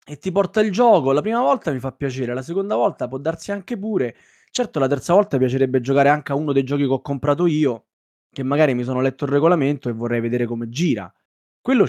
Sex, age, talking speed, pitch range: male, 20-39, 230 wpm, 135-180 Hz